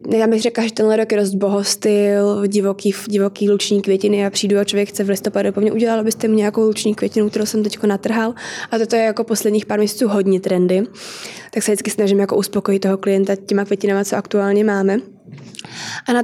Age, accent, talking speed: 20-39, native, 190 wpm